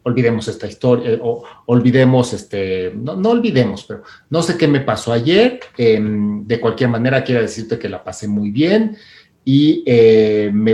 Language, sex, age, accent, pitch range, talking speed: Spanish, male, 40-59, Mexican, 115-150 Hz, 170 wpm